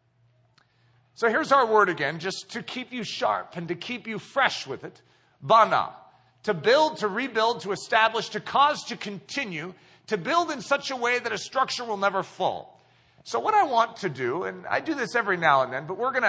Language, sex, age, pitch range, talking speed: English, male, 40-59, 175-240 Hz, 210 wpm